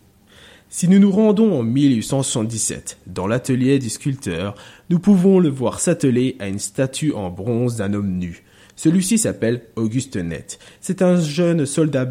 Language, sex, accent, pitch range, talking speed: French, male, French, 105-150 Hz, 155 wpm